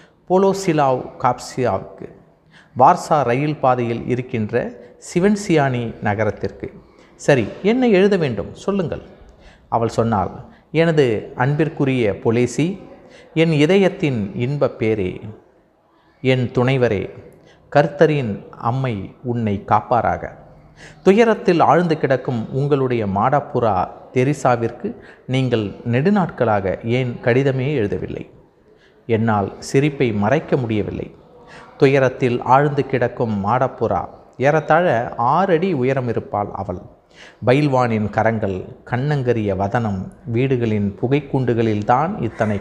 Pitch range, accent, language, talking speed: 110-155 Hz, native, Tamil, 85 wpm